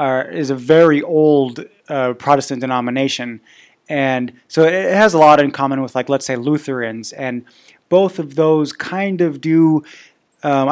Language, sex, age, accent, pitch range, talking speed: English, male, 20-39, American, 130-160 Hz, 155 wpm